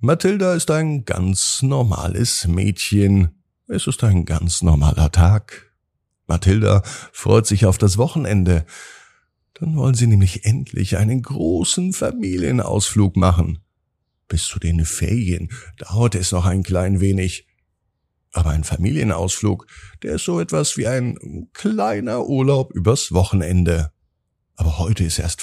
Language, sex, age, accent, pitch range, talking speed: German, male, 50-69, German, 85-115 Hz, 125 wpm